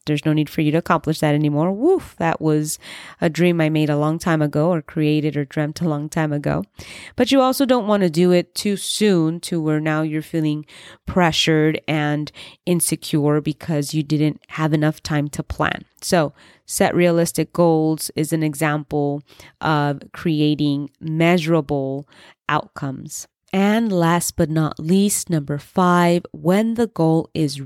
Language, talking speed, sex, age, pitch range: English, 165 wpm, female, 20-39, 155-180 Hz